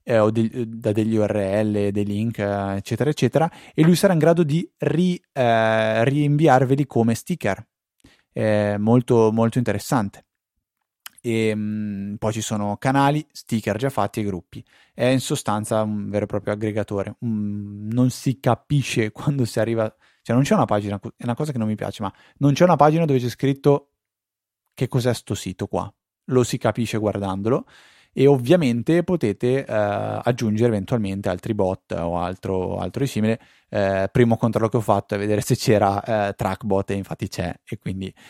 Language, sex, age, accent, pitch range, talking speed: Italian, male, 20-39, native, 100-125 Hz, 170 wpm